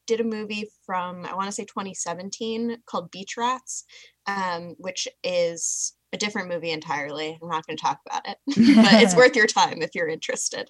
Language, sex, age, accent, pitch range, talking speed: English, female, 10-29, American, 160-210 Hz, 190 wpm